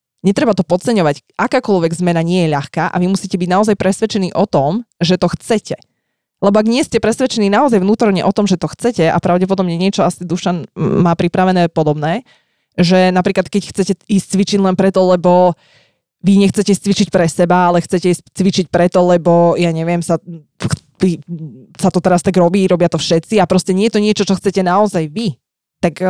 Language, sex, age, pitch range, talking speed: Slovak, female, 20-39, 170-195 Hz, 185 wpm